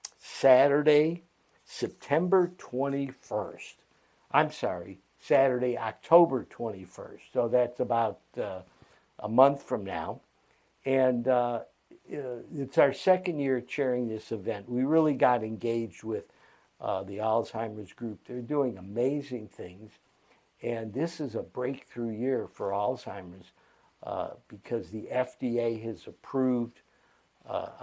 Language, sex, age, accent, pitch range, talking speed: English, male, 60-79, American, 110-130 Hz, 115 wpm